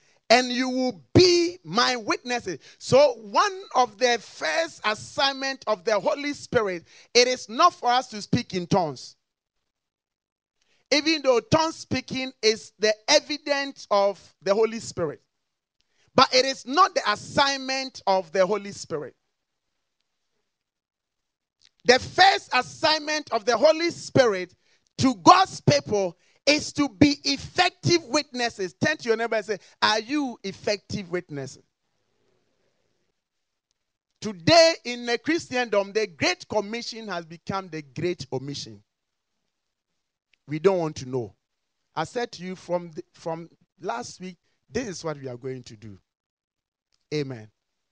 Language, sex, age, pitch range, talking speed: English, male, 40-59, 165-265 Hz, 130 wpm